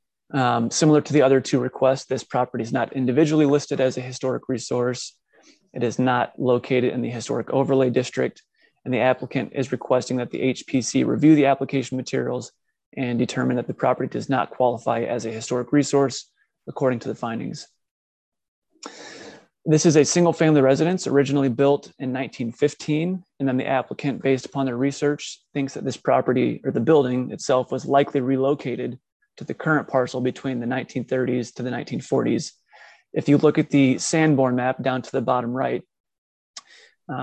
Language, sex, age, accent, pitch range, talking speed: English, male, 30-49, American, 125-140 Hz, 170 wpm